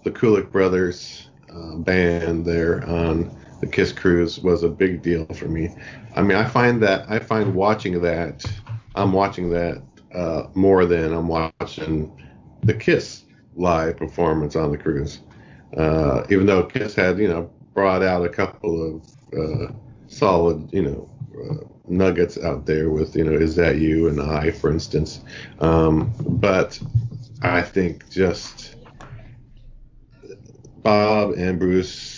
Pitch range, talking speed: 80-95 Hz, 145 wpm